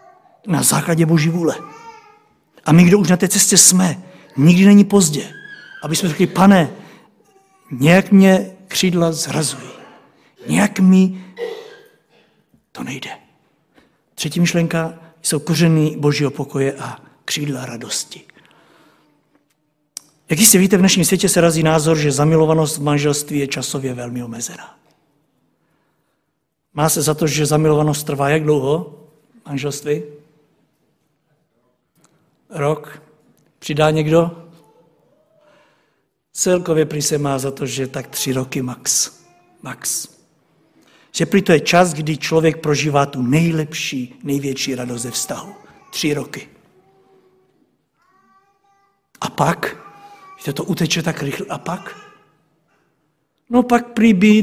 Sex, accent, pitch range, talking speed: male, native, 145-190 Hz, 120 wpm